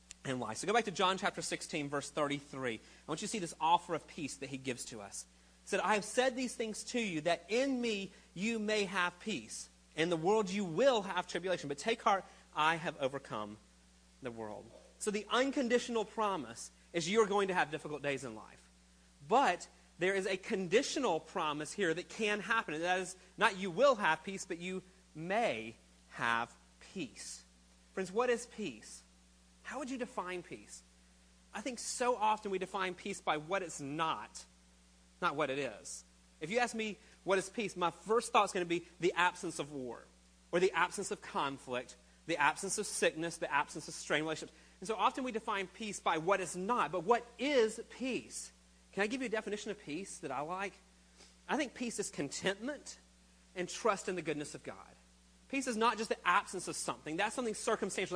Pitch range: 130-210 Hz